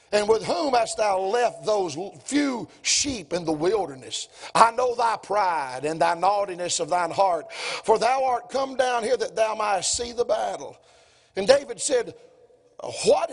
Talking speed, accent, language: 170 wpm, American, English